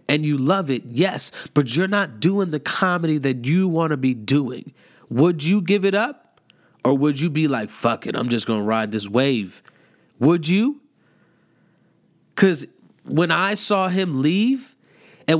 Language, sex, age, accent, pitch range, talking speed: English, male, 30-49, American, 125-175 Hz, 175 wpm